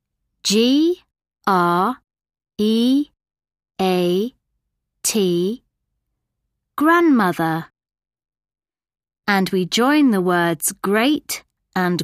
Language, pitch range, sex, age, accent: English, 180-290 Hz, female, 30-49, British